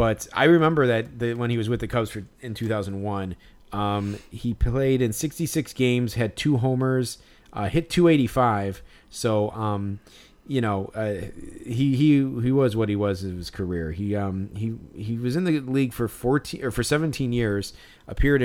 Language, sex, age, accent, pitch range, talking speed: English, male, 30-49, American, 100-120 Hz, 190 wpm